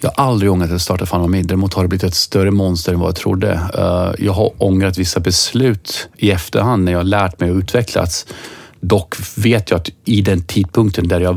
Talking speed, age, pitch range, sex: 215 wpm, 30-49, 90-105 Hz, male